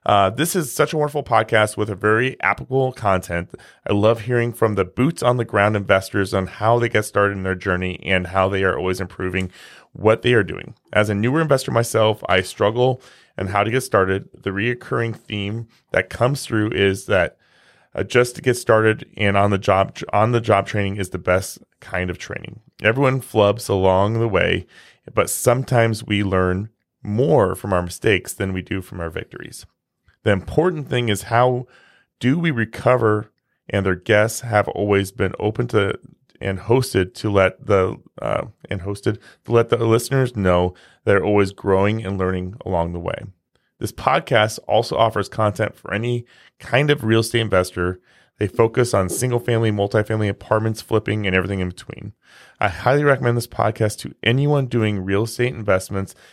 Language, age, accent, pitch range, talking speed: English, 30-49, American, 95-120 Hz, 175 wpm